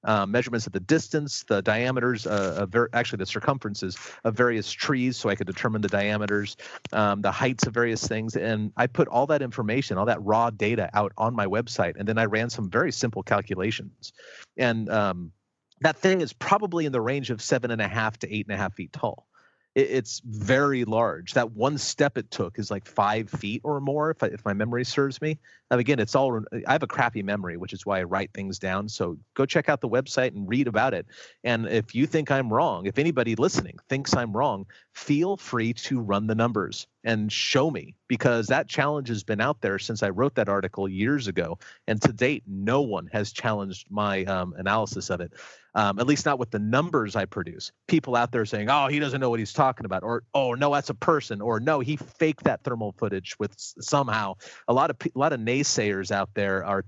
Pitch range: 100-135 Hz